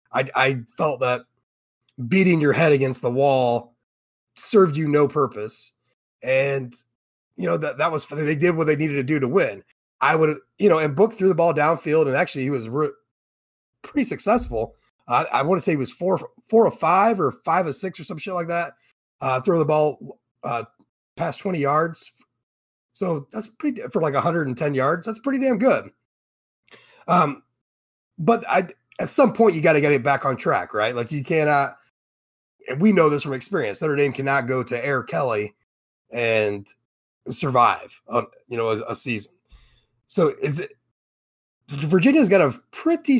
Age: 30-49